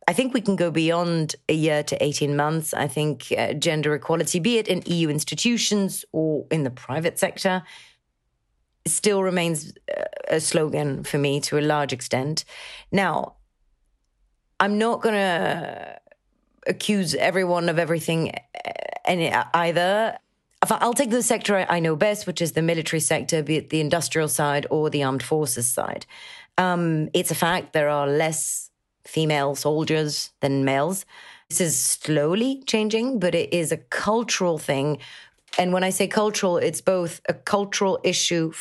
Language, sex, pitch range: English, female, 150-185 Hz